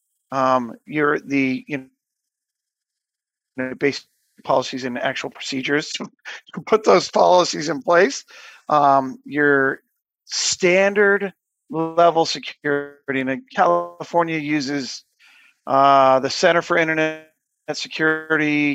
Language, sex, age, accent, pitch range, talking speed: English, male, 40-59, American, 140-185 Hz, 100 wpm